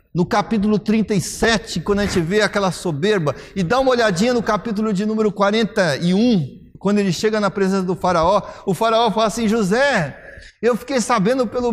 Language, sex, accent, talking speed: Portuguese, male, Brazilian, 175 wpm